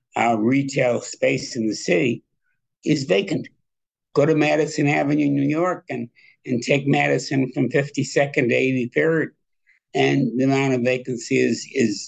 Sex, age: male, 60-79